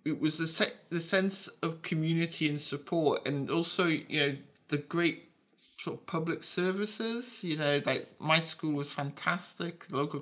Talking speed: 165 wpm